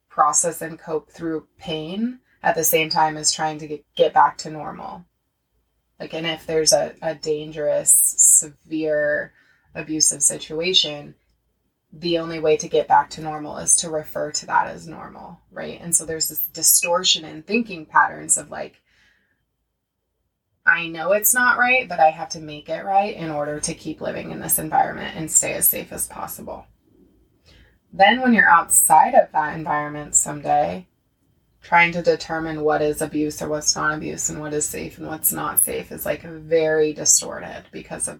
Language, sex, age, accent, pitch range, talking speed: English, female, 20-39, American, 155-180 Hz, 175 wpm